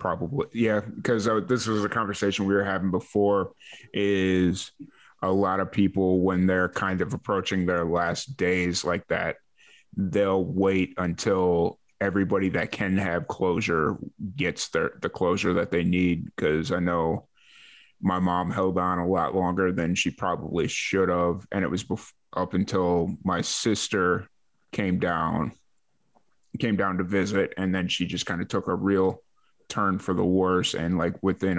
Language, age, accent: English, 20-39, American